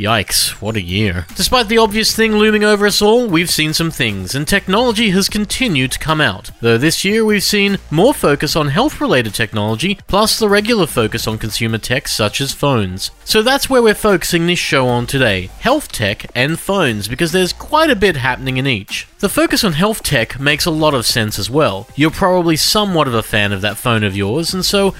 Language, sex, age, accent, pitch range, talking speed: English, male, 40-59, Australian, 120-195 Hz, 215 wpm